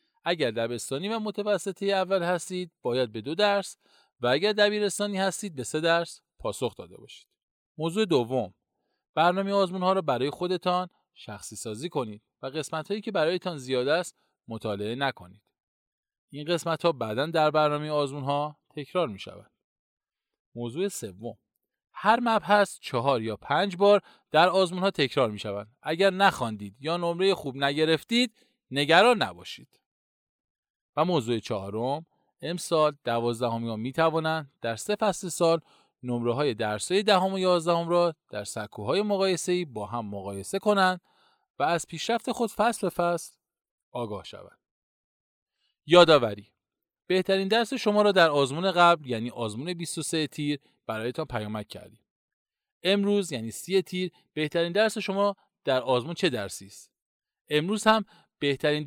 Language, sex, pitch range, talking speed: Persian, male, 125-195 Hz, 140 wpm